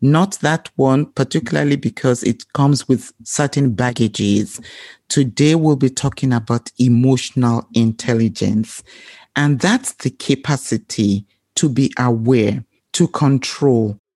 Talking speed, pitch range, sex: 110 wpm, 120-145 Hz, male